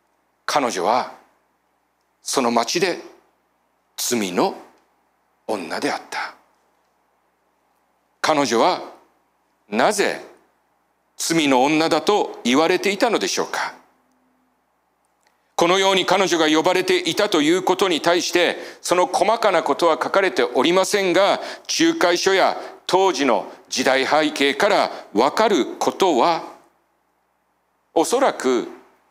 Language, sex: Japanese, male